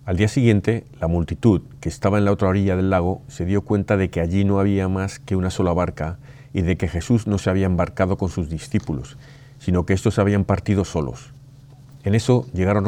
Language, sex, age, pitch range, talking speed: Spanish, male, 50-69, 90-130 Hz, 220 wpm